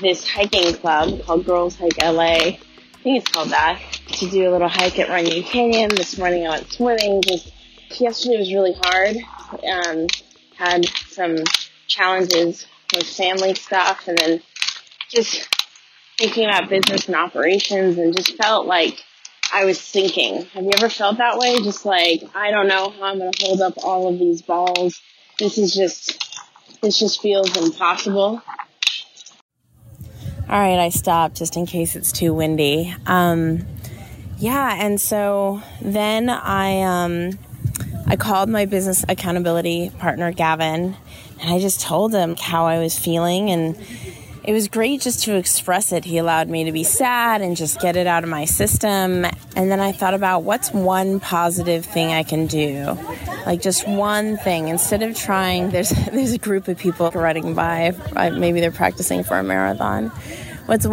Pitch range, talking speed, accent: 170-200 Hz, 165 wpm, American